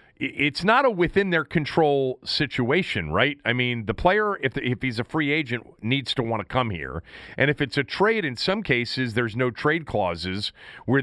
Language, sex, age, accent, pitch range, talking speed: English, male, 40-59, American, 100-140 Hz, 190 wpm